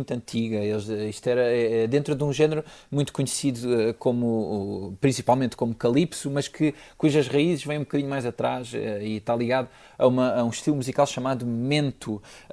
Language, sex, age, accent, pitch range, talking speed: Portuguese, male, 20-39, Portuguese, 110-135 Hz, 160 wpm